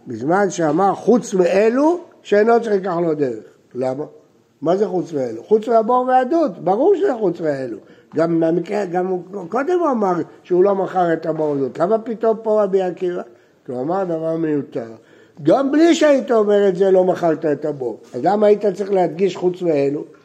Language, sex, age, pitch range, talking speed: Hebrew, male, 60-79, 165-235 Hz, 175 wpm